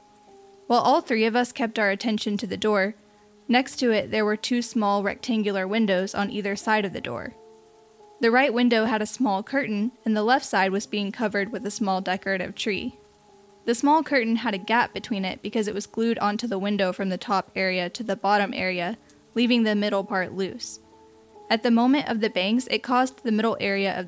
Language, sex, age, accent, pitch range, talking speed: English, female, 10-29, American, 200-240 Hz, 210 wpm